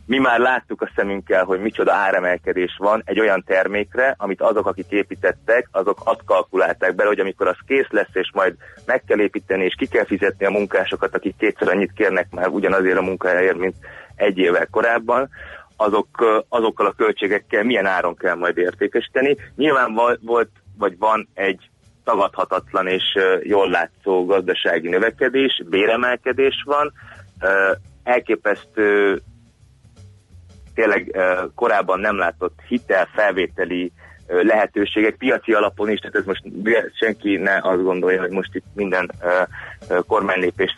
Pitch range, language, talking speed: 90-110 Hz, Hungarian, 135 wpm